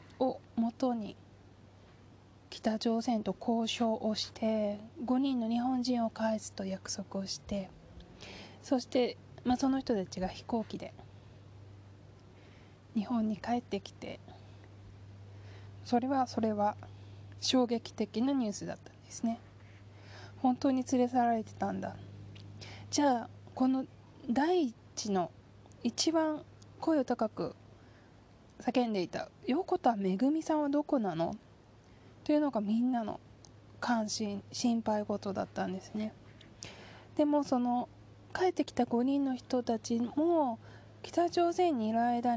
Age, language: 20-39, Japanese